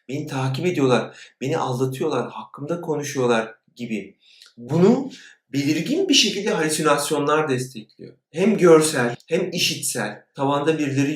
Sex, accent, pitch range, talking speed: male, native, 130-160 Hz, 110 wpm